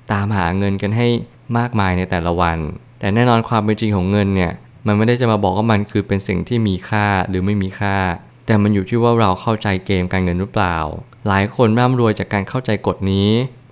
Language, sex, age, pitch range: Thai, male, 20-39, 95-115 Hz